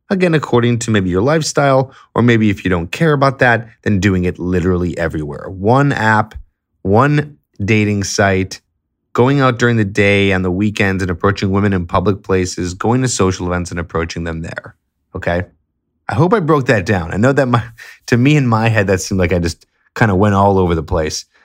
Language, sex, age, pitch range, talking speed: English, male, 20-39, 90-115 Hz, 205 wpm